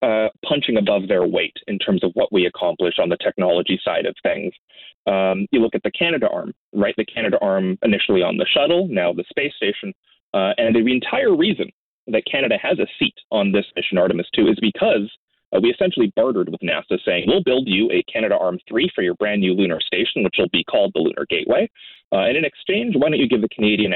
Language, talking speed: English, 225 wpm